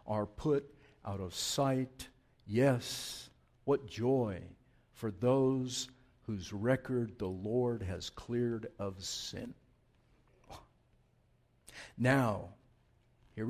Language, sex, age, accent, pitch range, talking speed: English, male, 60-79, American, 120-170 Hz, 90 wpm